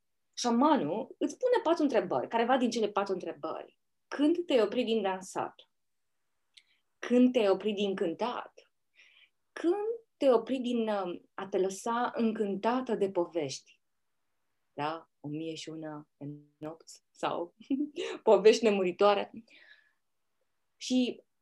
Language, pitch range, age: Romanian, 170-235 Hz, 20-39